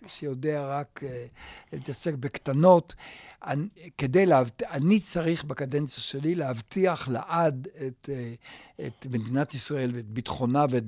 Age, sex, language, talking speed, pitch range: 60-79, male, Hebrew, 120 wpm, 130-155 Hz